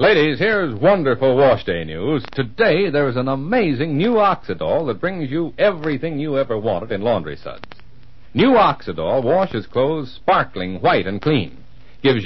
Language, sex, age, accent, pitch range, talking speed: English, male, 60-79, American, 110-160 Hz, 150 wpm